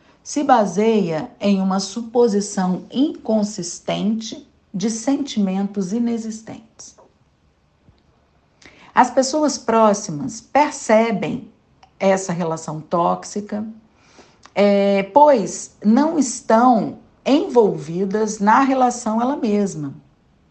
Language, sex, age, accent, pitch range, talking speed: Portuguese, female, 50-69, Brazilian, 190-240 Hz, 70 wpm